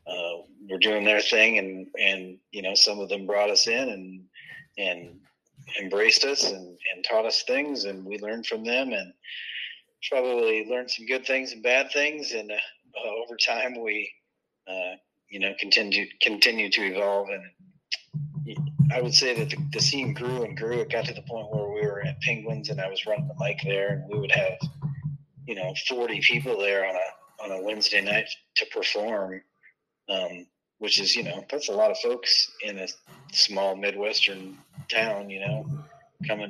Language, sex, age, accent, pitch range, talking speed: English, male, 30-49, American, 100-150 Hz, 185 wpm